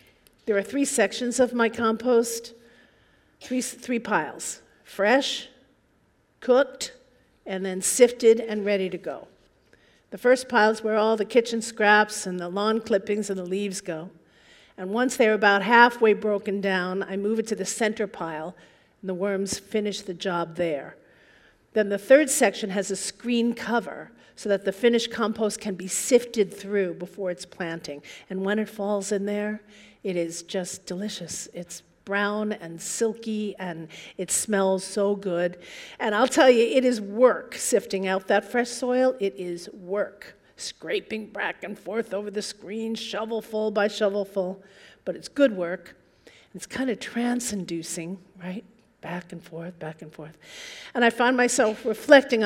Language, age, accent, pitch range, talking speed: English, 50-69, American, 185-230 Hz, 160 wpm